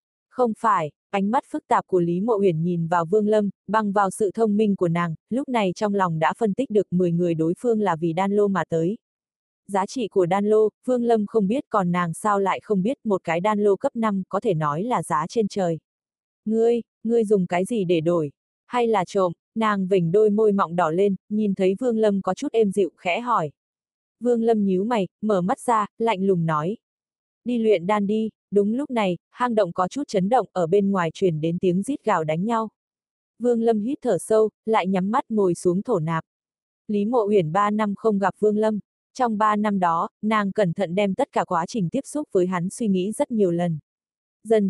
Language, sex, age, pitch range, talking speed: Vietnamese, female, 20-39, 180-220 Hz, 230 wpm